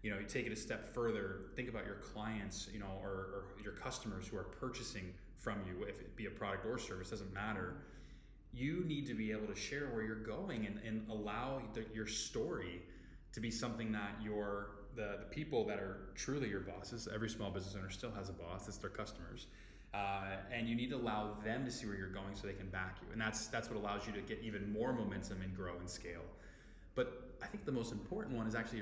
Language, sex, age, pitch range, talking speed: English, male, 20-39, 95-115 Hz, 235 wpm